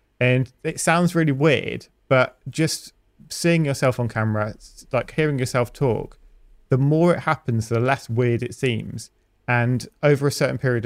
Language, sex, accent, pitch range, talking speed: English, male, British, 115-135 Hz, 160 wpm